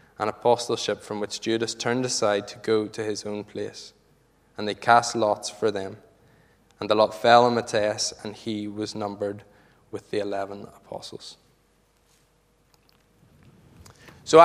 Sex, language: male, English